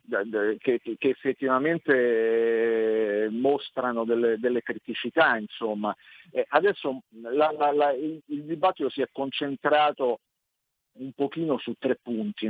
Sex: male